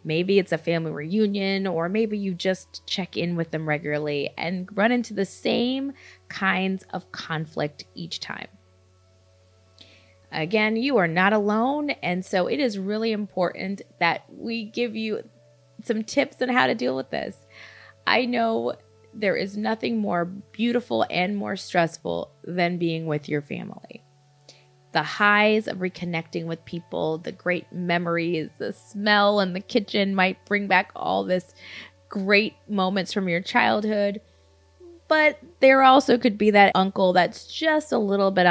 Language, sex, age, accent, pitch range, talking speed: English, female, 20-39, American, 160-210 Hz, 155 wpm